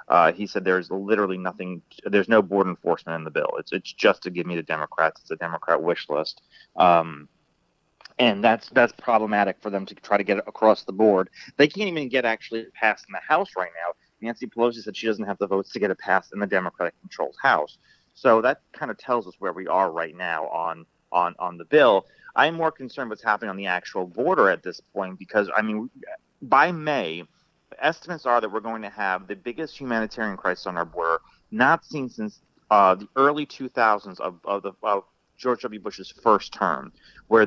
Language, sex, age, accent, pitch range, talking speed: English, male, 30-49, American, 95-125 Hz, 215 wpm